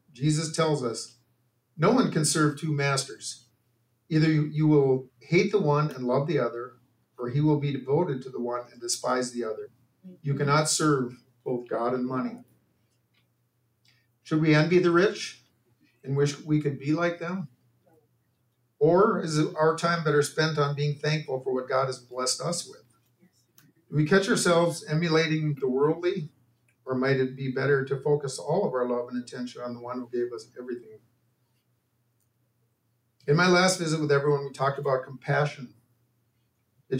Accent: American